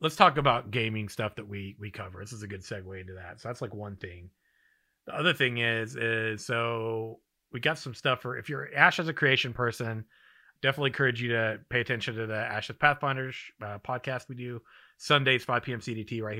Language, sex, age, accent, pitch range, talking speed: English, male, 30-49, American, 110-145 Hz, 210 wpm